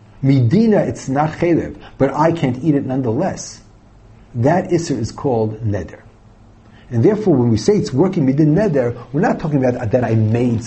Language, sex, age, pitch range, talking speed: English, male, 50-69, 110-150 Hz, 175 wpm